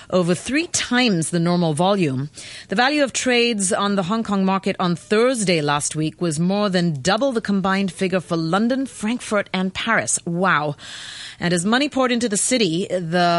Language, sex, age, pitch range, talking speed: English, female, 30-49, 160-210 Hz, 180 wpm